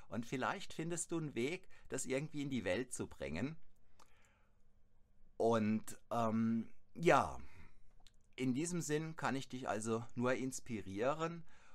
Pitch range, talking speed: 105-135 Hz, 130 wpm